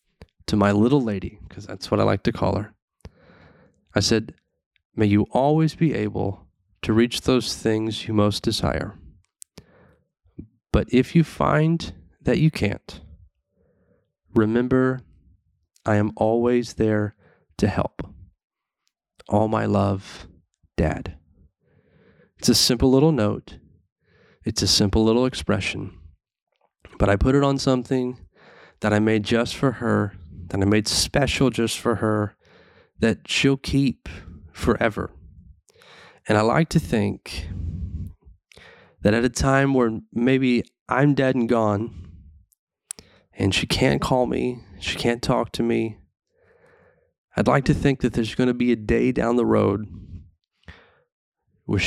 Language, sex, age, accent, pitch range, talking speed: English, male, 30-49, American, 90-120 Hz, 135 wpm